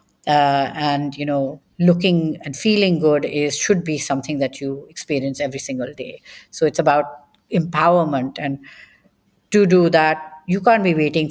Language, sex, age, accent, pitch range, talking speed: English, female, 50-69, Indian, 145-175 Hz, 160 wpm